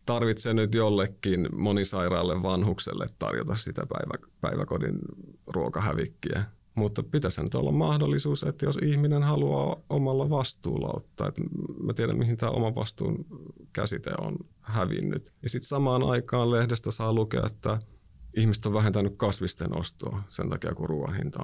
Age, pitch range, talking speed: 30-49, 95-120 Hz, 135 wpm